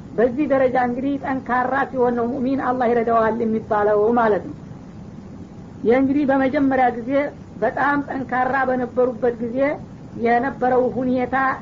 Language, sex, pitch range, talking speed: Amharic, female, 240-265 Hz, 110 wpm